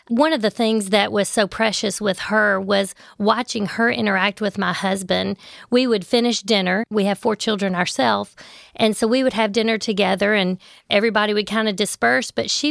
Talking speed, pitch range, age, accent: 195 wpm, 200-230 Hz, 40-59, American